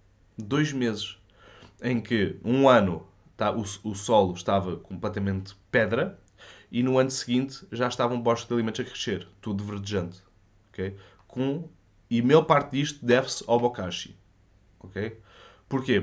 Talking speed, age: 125 wpm, 20-39